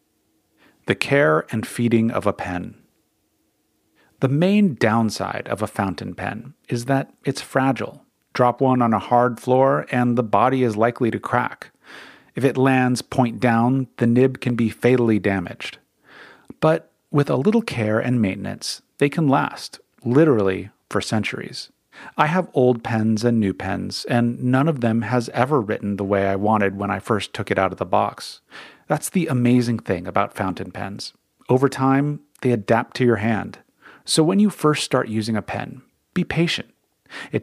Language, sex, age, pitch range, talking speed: English, male, 40-59, 110-130 Hz, 170 wpm